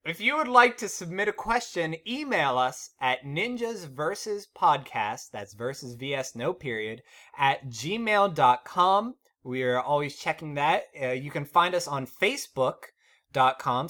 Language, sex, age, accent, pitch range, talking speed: English, male, 20-39, American, 130-200 Hz, 135 wpm